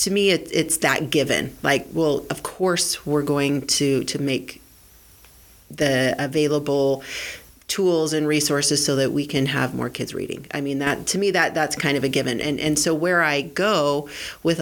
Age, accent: 40-59, American